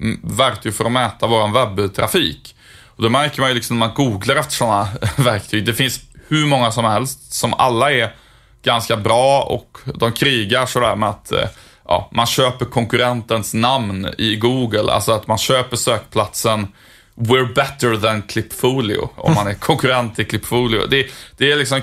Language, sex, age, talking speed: Swedish, male, 20-39, 170 wpm